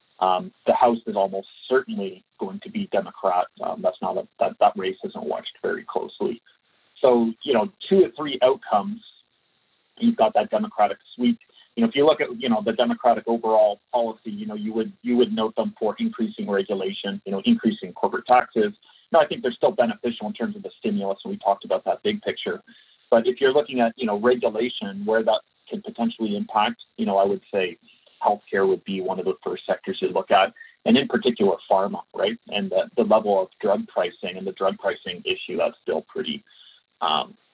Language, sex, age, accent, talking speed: English, male, 30-49, American, 205 wpm